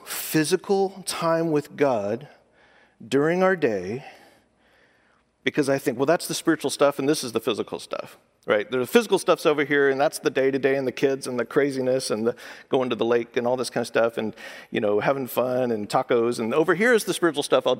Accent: American